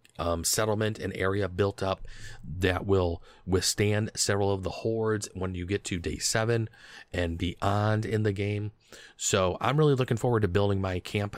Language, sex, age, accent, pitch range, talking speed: English, male, 30-49, American, 90-110 Hz, 175 wpm